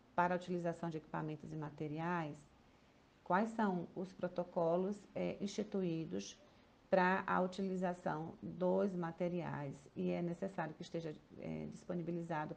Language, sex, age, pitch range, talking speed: Portuguese, female, 40-59, 165-200 Hz, 110 wpm